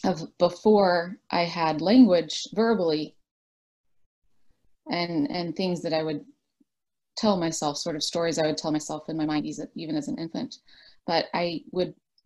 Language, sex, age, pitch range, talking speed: English, female, 30-49, 160-200 Hz, 150 wpm